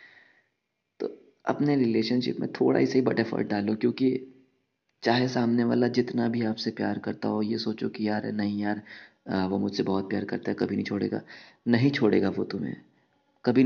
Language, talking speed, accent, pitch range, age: Hindi, 170 wpm, native, 100-125 Hz, 20-39